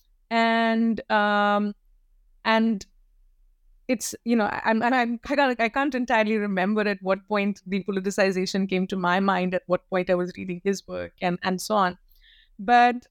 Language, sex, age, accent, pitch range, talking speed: English, female, 20-39, Indian, 185-220 Hz, 185 wpm